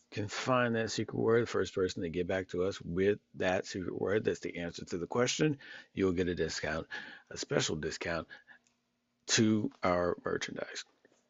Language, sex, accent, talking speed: English, male, American, 175 wpm